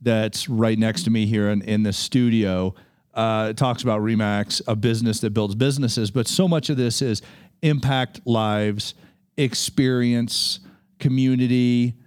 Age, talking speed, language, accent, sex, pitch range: 40-59, 145 wpm, English, American, male, 110-145 Hz